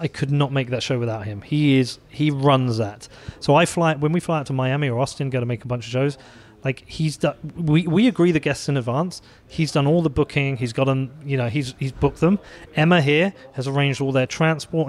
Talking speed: 245 wpm